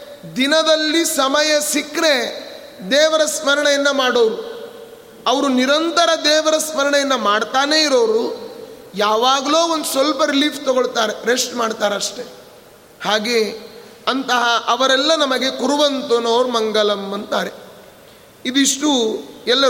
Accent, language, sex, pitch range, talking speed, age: native, Kannada, male, 255-295 Hz, 90 wpm, 30-49